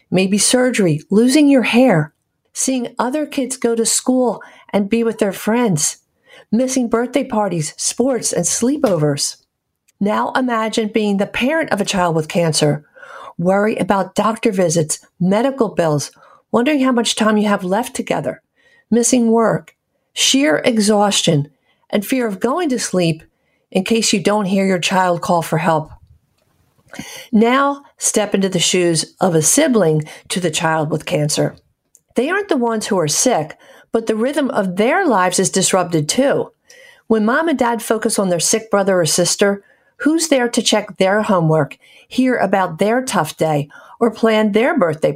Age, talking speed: 50-69, 160 wpm